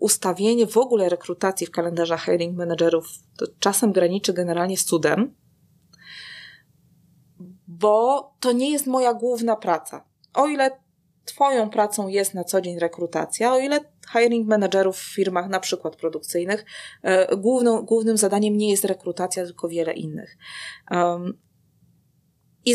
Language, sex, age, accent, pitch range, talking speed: Polish, female, 20-39, native, 175-235 Hz, 130 wpm